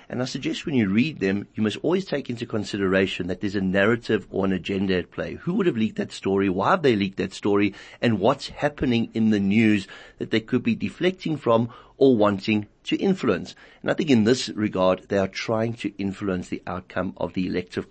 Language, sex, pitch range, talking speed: English, male, 100-130 Hz, 220 wpm